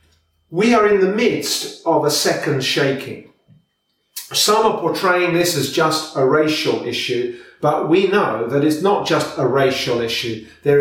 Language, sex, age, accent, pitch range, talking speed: English, male, 40-59, British, 135-175 Hz, 160 wpm